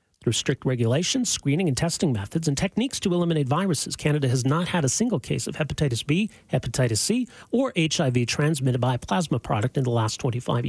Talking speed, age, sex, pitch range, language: 195 wpm, 40-59, male, 125-175 Hz, English